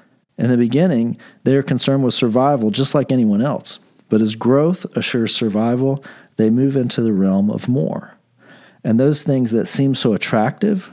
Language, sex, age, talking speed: English, male, 40-59, 170 wpm